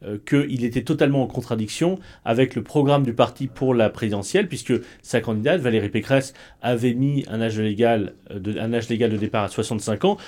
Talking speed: 185 wpm